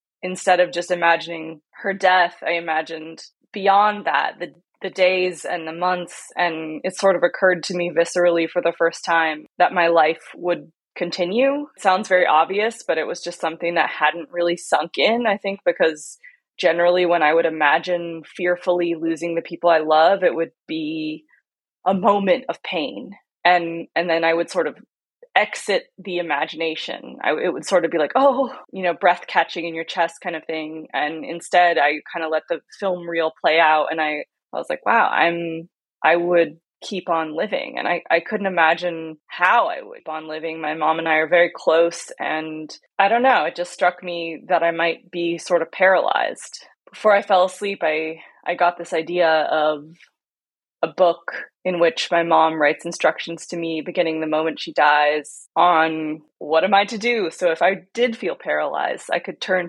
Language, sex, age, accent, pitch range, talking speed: English, female, 20-39, American, 165-185 Hz, 195 wpm